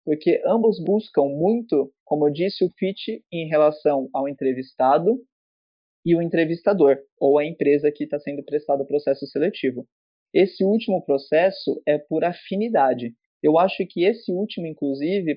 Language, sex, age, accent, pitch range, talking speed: Portuguese, male, 20-39, Brazilian, 145-190 Hz, 150 wpm